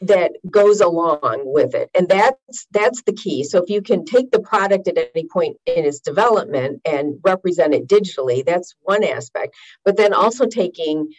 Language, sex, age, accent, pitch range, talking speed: English, female, 50-69, American, 155-250 Hz, 180 wpm